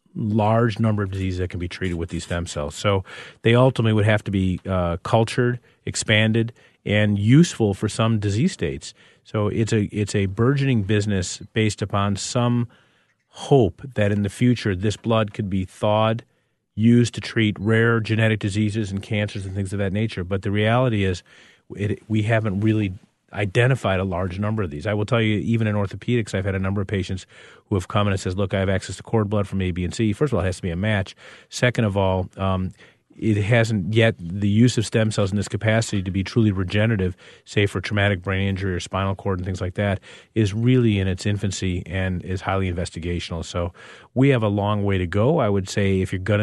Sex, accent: male, American